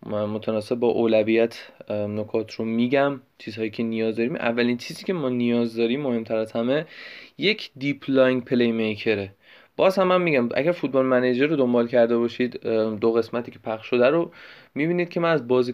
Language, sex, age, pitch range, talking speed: Persian, male, 20-39, 120-150 Hz, 170 wpm